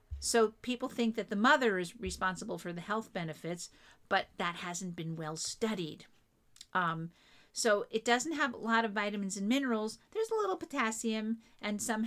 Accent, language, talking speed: American, English, 175 wpm